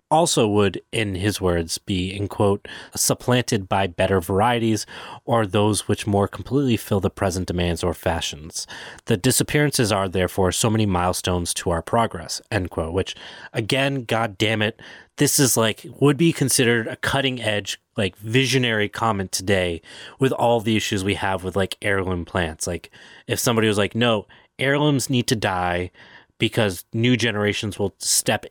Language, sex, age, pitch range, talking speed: English, male, 30-49, 95-115 Hz, 165 wpm